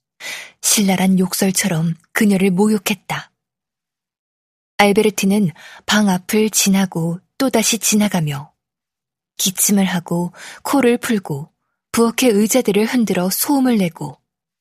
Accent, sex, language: native, female, Korean